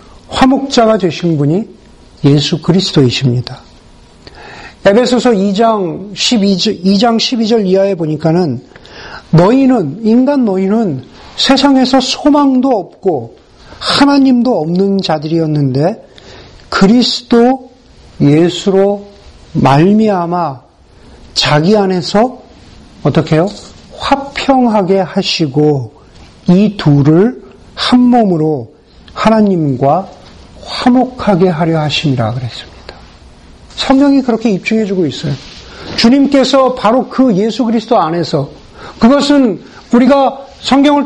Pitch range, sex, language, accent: 175-250 Hz, male, Korean, native